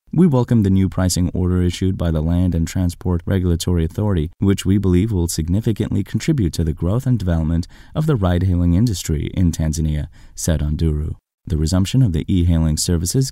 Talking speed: 175 wpm